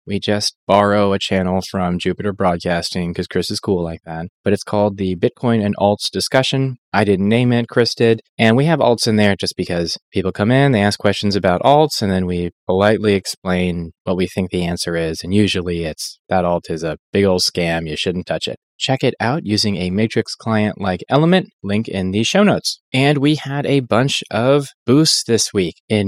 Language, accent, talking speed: English, American, 210 wpm